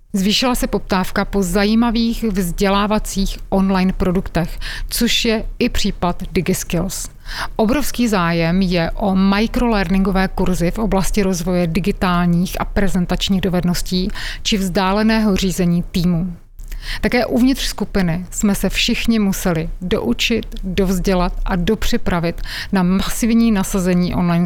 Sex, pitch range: female, 180-210 Hz